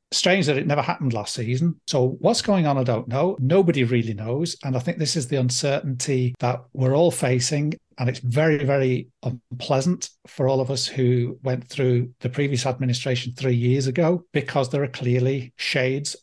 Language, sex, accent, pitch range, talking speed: English, male, British, 125-145 Hz, 190 wpm